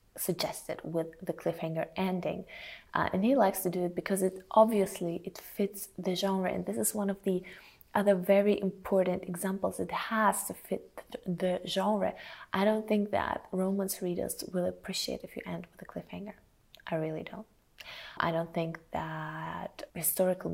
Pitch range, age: 170-205 Hz, 20-39